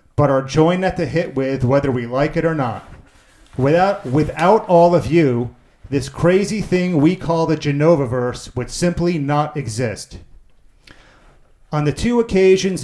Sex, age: male, 40-59